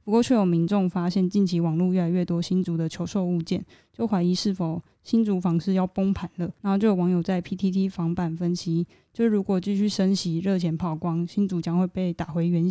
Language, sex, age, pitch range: Chinese, female, 20-39, 170-195 Hz